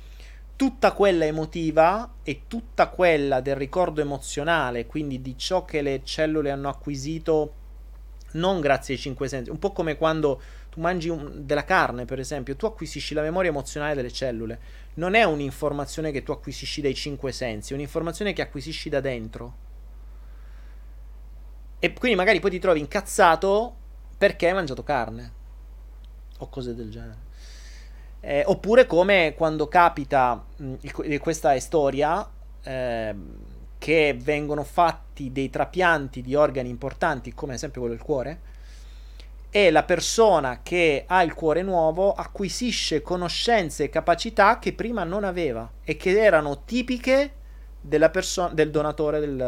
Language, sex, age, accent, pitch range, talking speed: Italian, male, 30-49, native, 110-165 Hz, 140 wpm